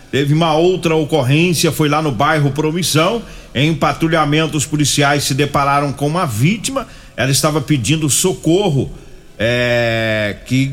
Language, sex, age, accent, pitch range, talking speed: Portuguese, male, 40-59, Brazilian, 140-175 Hz, 135 wpm